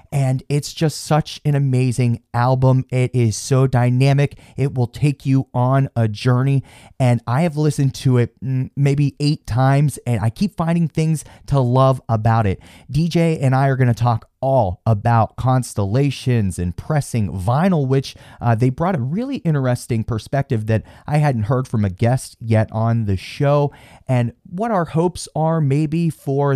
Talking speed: 170 wpm